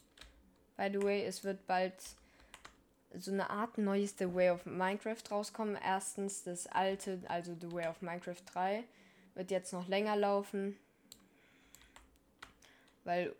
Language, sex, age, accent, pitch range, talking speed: German, female, 10-29, German, 175-205 Hz, 130 wpm